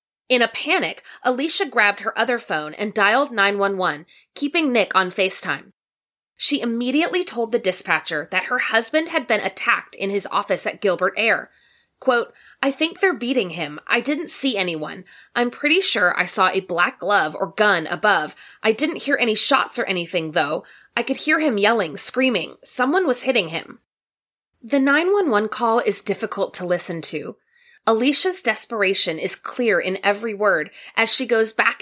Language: English